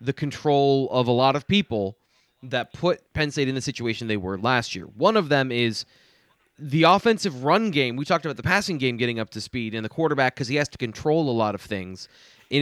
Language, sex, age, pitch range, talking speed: English, male, 20-39, 120-165 Hz, 235 wpm